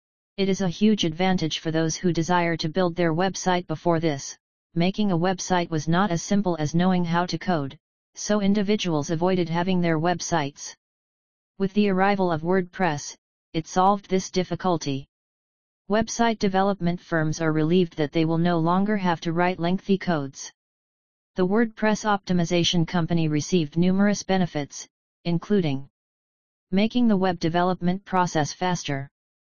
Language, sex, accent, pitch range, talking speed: English, female, American, 165-195 Hz, 145 wpm